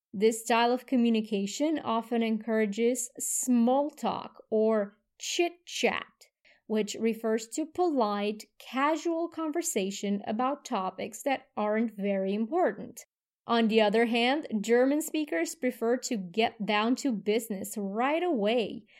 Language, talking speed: English, 115 wpm